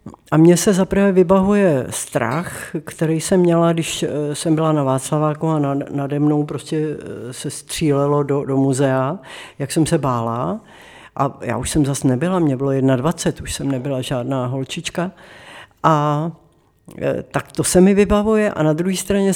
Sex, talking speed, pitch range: female, 160 wpm, 140-180 Hz